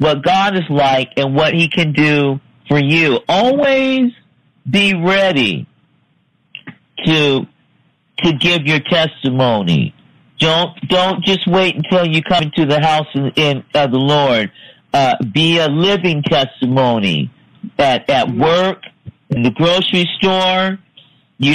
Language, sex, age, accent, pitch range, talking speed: English, male, 50-69, American, 140-175 Hz, 130 wpm